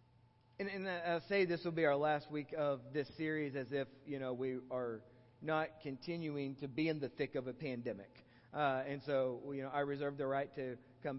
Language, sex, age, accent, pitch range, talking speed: English, male, 40-59, American, 135-170 Hz, 215 wpm